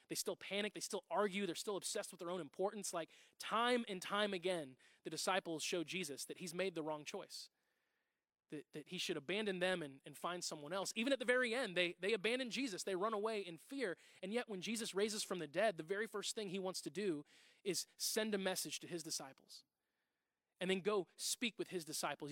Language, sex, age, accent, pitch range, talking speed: English, male, 20-39, American, 175-215 Hz, 225 wpm